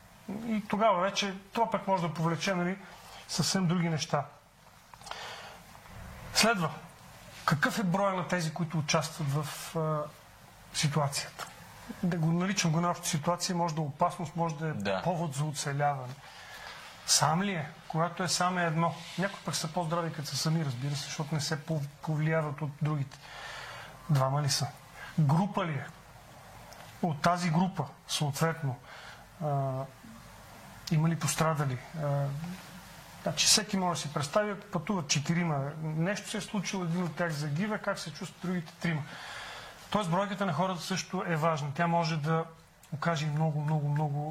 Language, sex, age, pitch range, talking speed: Bulgarian, male, 40-59, 150-180 Hz, 150 wpm